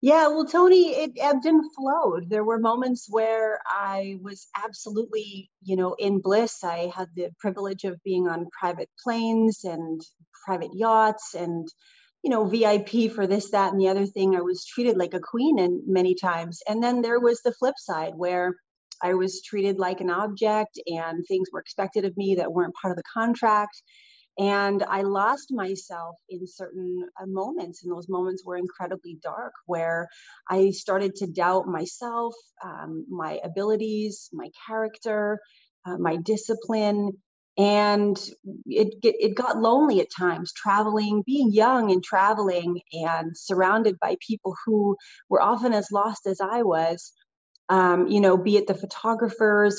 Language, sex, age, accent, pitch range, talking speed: English, female, 30-49, American, 180-225 Hz, 165 wpm